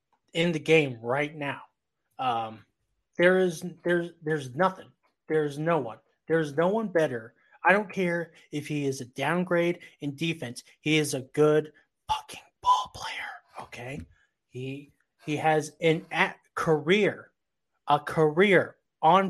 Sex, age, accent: male, 30-49, American